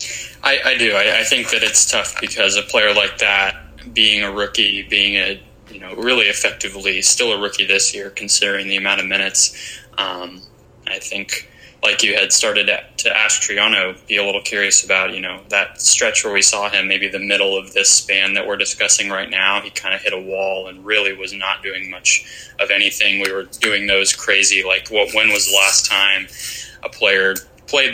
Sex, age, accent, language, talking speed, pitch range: male, 20-39, American, English, 210 wpm, 95-110 Hz